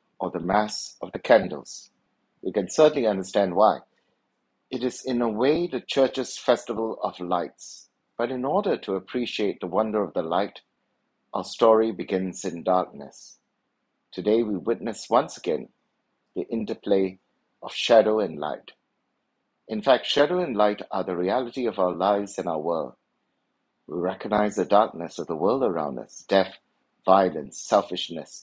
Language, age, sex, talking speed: English, 60-79, male, 155 wpm